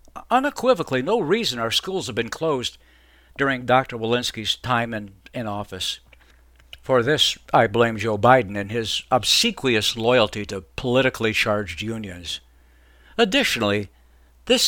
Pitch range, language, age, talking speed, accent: 100-155 Hz, English, 60-79, 125 wpm, American